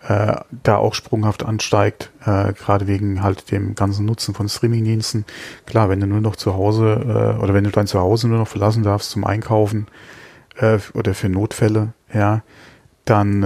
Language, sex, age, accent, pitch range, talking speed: German, male, 30-49, German, 100-115 Hz, 175 wpm